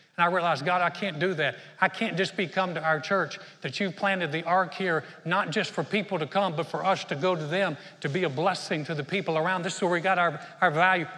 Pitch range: 175-215 Hz